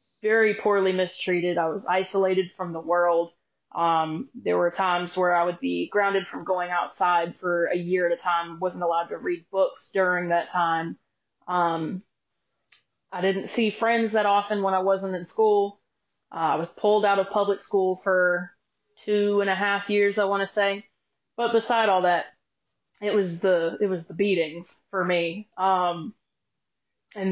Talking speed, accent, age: 175 wpm, American, 20-39